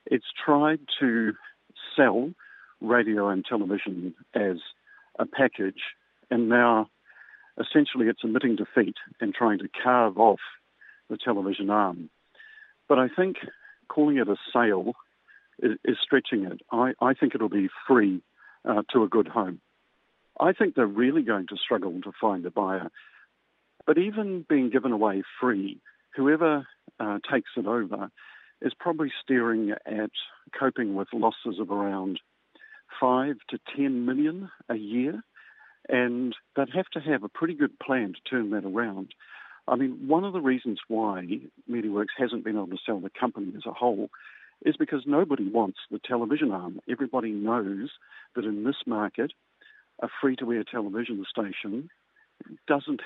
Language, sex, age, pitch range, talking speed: English, male, 50-69, 105-145 Hz, 145 wpm